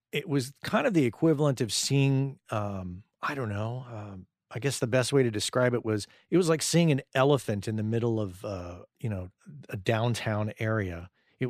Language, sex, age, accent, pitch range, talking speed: English, male, 40-59, American, 105-130 Hz, 205 wpm